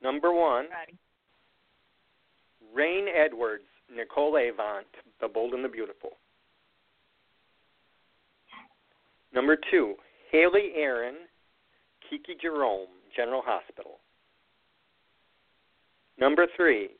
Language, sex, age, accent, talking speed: English, male, 50-69, American, 70 wpm